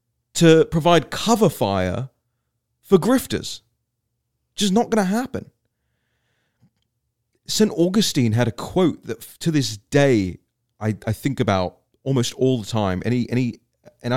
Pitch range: 110-140 Hz